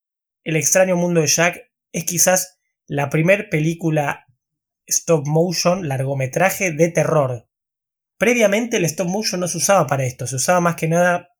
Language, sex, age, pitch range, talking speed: Spanish, male, 20-39, 140-175 Hz, 155 wpm